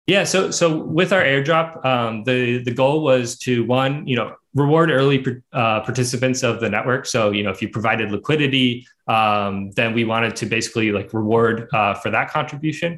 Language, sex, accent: English, male, American